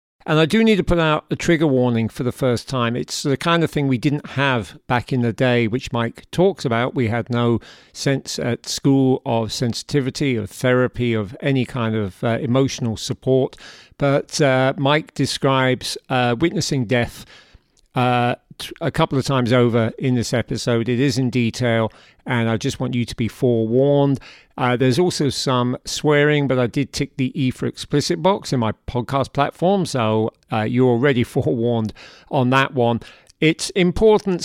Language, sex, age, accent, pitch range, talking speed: English, male, 50-69, British, 115-140 Hz, 180 wpm